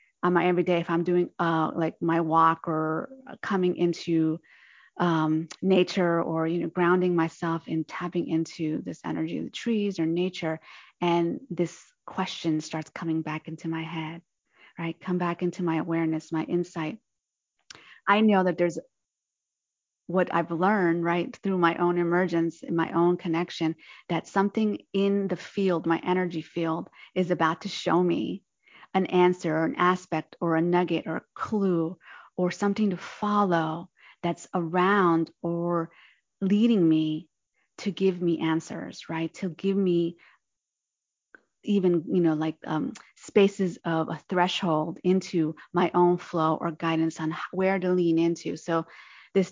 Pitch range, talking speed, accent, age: 165-185 Hz, 155 wpm, American, 30-49